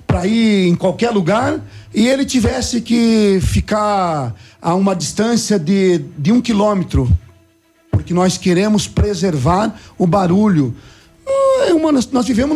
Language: Portuguese